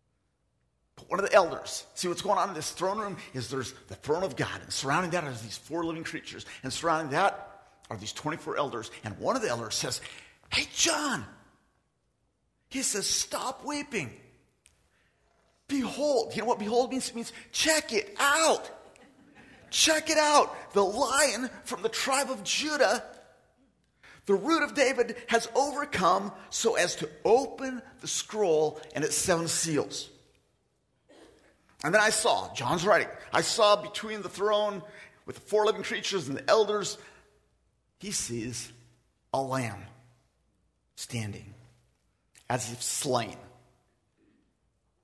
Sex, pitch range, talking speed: male, 130-220 Hz, 145 wpm